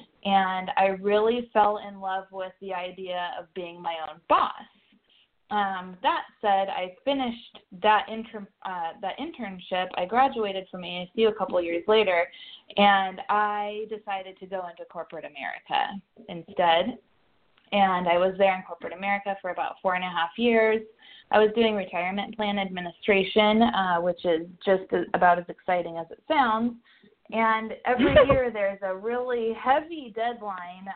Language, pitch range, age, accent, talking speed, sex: English, 180-215 Hz, 20-39, American, 150 wpm, female